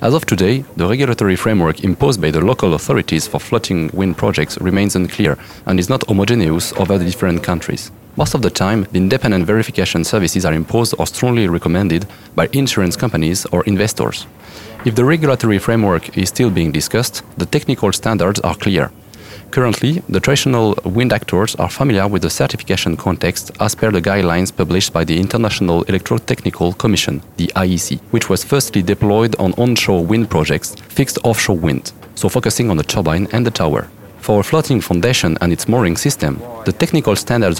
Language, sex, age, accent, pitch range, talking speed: English, male, 30-49, French, 90-115 Hz, 170 wpm